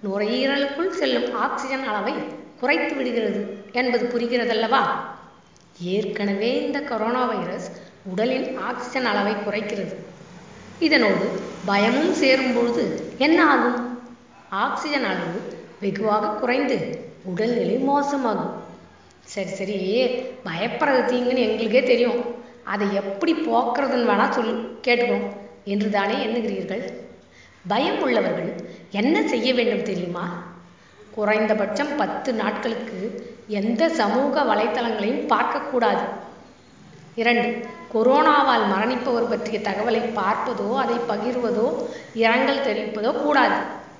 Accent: native